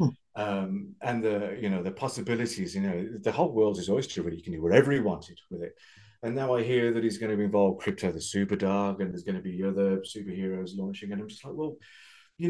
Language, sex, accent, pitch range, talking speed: English, male, British, 105-165 Hz, 245 wpm